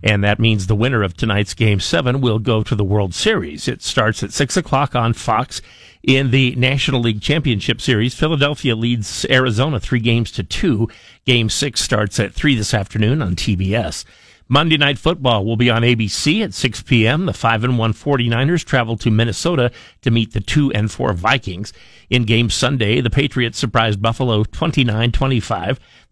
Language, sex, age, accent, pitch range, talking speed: English, male, 50-69, American, 110-130 Hz, 165 wpm